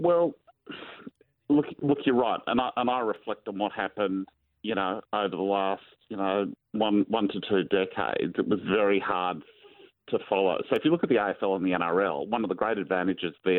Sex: male